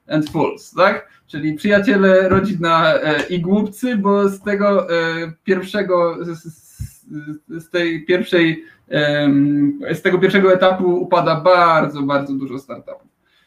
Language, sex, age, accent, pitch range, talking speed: Polish, male, 20-39, native, 160-195 Hz, 85 wpm